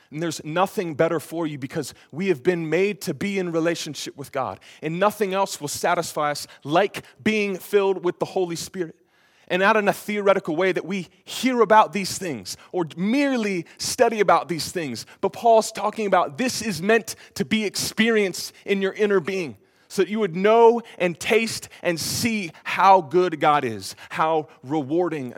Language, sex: English, male